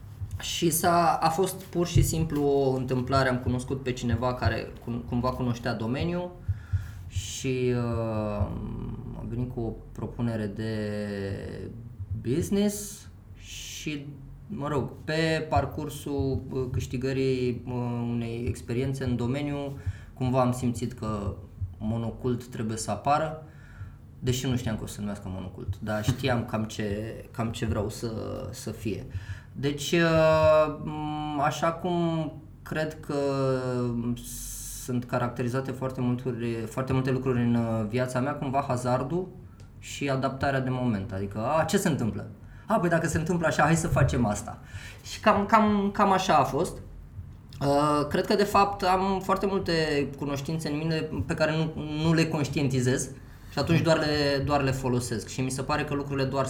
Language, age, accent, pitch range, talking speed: Romanian, 20-39, native, 110-145 Hz, 145 wpm